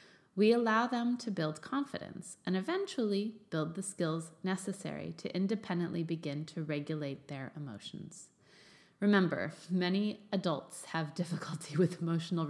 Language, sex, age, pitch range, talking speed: English, female, 30-49, 160-215 Hz, 125 wpm